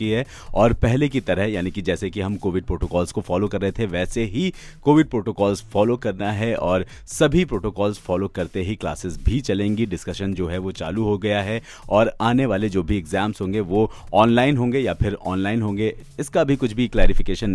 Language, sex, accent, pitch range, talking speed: Hindi, male, native, 95-120 Hz, 205 wpm